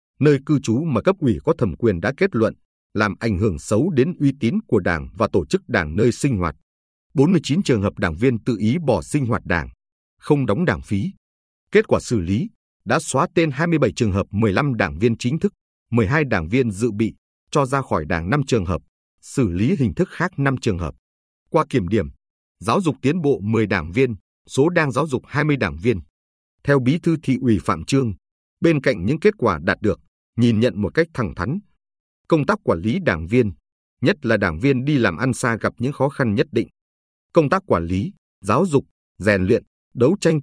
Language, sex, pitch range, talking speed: Vietnamese, male, 90-140 Hz, 215 wpm